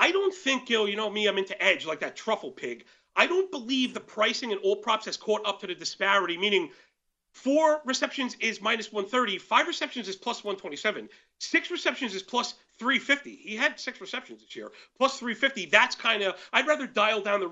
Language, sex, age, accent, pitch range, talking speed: English, male, 40-59, American, 200-255 Hz, 210 wpm